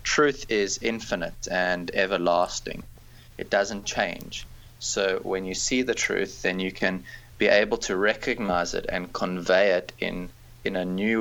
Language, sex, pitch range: English, male, 90-105 Hz